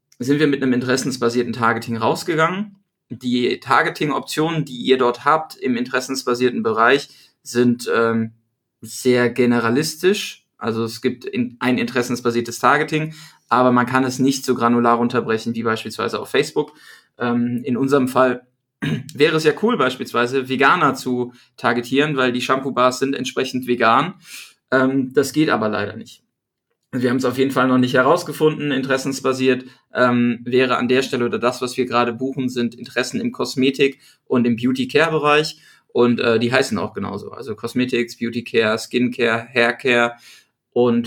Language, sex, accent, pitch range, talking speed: German, male, German, 120-135 Hz, 150 wpm